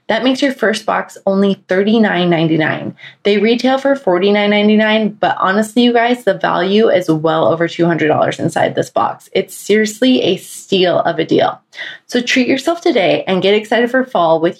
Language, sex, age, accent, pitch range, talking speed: English, female, 20-39, American, 165-210 Hz, 170 wpm